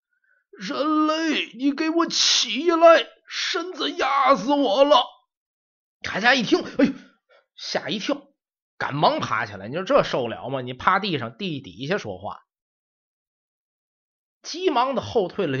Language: Chinese